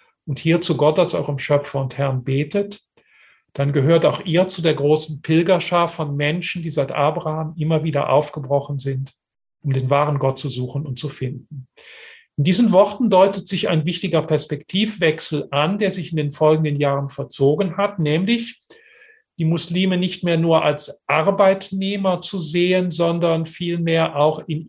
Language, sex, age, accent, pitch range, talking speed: German, male, 40-59, German, 145-180 Hz, 165 wpm